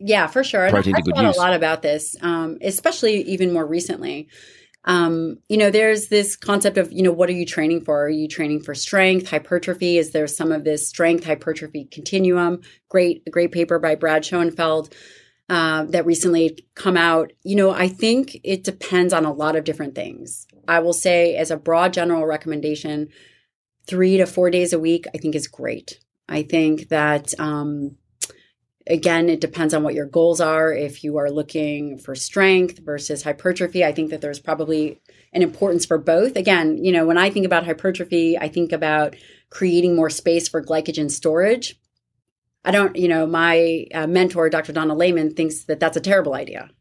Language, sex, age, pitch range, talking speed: English, female, 30-49, 155-180 Hz, 185 wpm